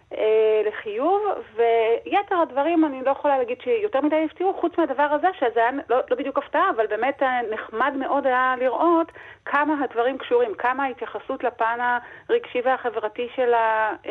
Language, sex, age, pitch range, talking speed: Hebrew, female, 40-59, 225-330 Hz, 140 wpm